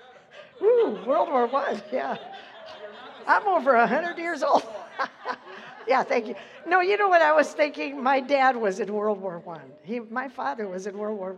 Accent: American